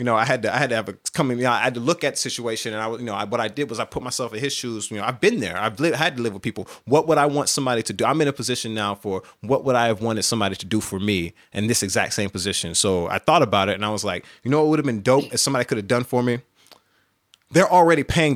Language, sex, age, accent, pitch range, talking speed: English, male, 30-49, American, 105-130 Hz, 335 wpm